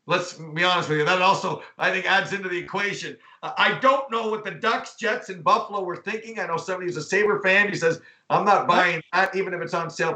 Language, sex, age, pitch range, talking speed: English, male, 50-69, 180-225 Hz, 255 wpm